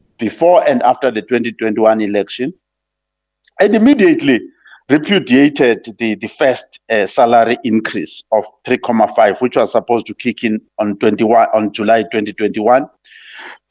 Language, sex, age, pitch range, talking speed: English, male, 50-69, 110-155 Hz, 125 wpm